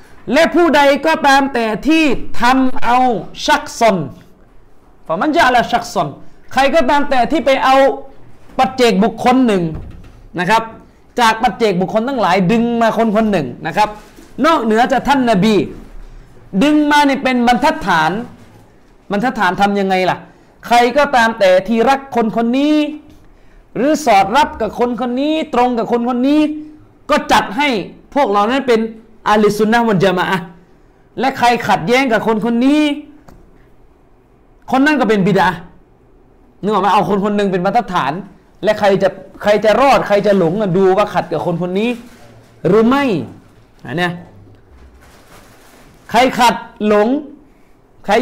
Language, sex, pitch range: Thai, male, 195-265 Hz